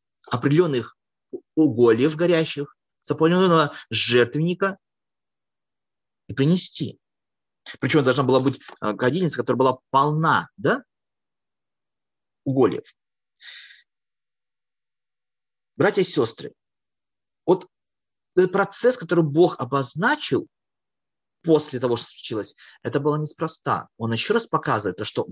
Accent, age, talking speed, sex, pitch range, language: native, 30-49, 90 wpm, male, 120-165 Hz, Russian